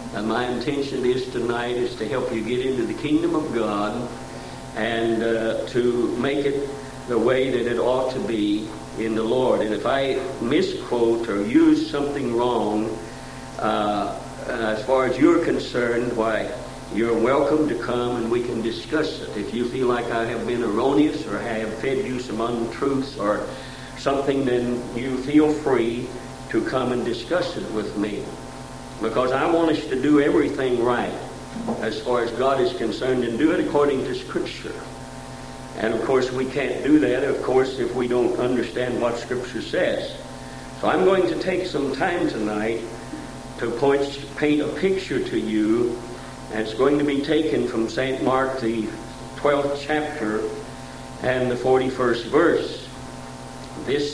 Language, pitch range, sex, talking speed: English, 115-140 Hz, male, 165 wpm